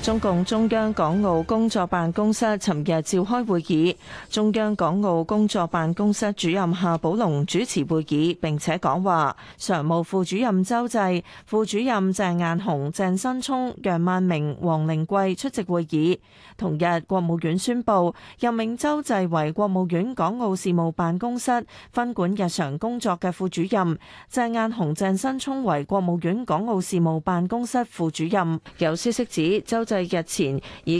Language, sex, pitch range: Chinese, female, 170-220 Hz